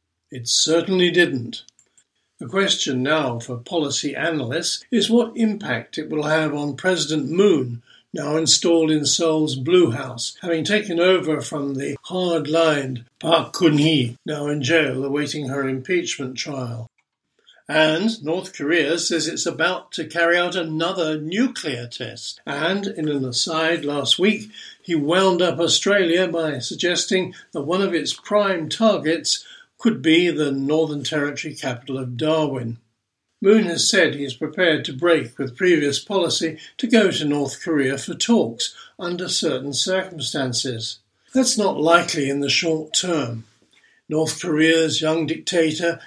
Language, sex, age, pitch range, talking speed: English, male, 60-79, 140-175 Hz, 145 wpm